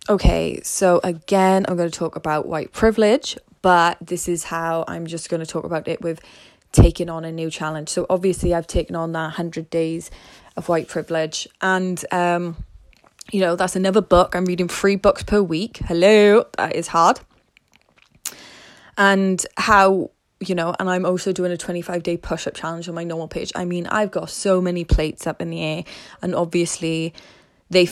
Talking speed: 185 wpm